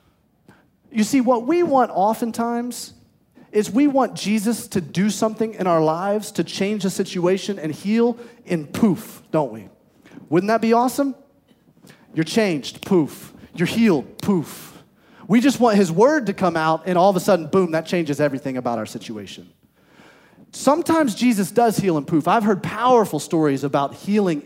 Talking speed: 165 wpm